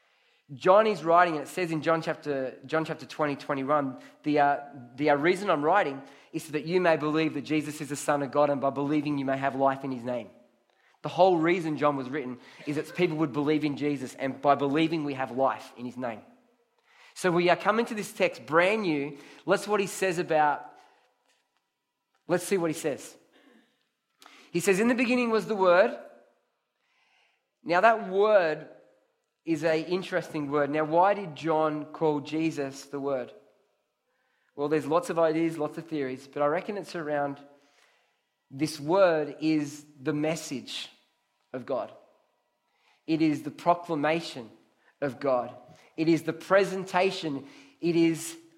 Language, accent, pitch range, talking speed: English, Australian, 145-170 Hz, 170 wpm